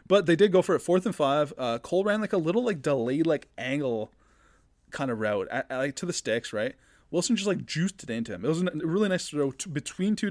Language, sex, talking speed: English, male, 250 wpm